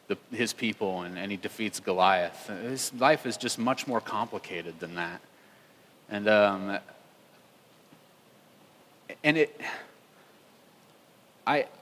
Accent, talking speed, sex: American, 105 wpm, male